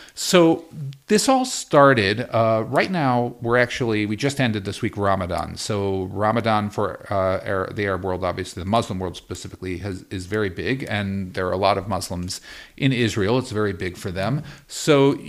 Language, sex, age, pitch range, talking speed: English, male, 50-69, 100-135 Hz, 180 wpm